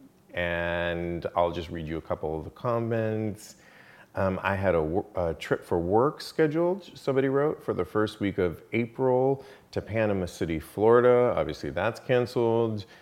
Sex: male